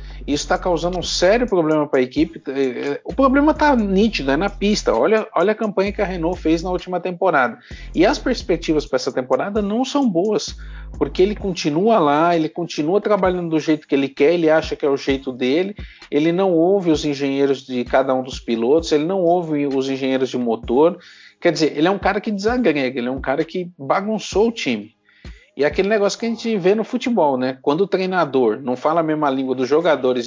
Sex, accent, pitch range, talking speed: male, Brazilian, 145-200 Hz, 215 wpm